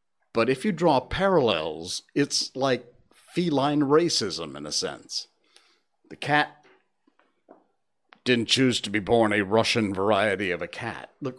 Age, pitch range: 50-69, 110-150 Hz